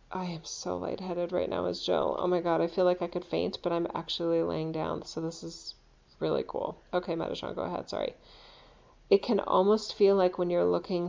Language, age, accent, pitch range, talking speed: English, 30-49, American, 170-195 Hz, 215 wpm